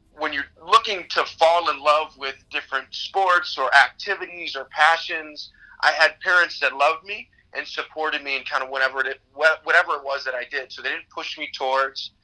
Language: English